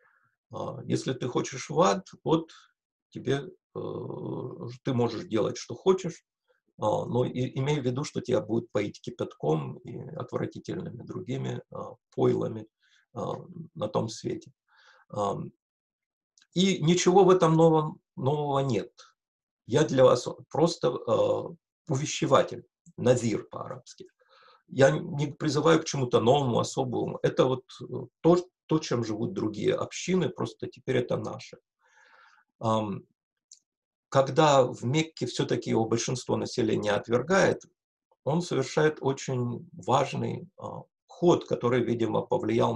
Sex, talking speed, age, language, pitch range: male, 110 wpm, 50-69, Russian, 125-175 Hz